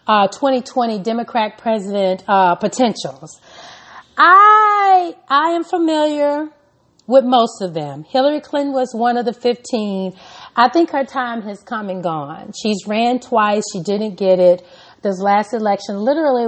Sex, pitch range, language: female, 185-230 Hz, English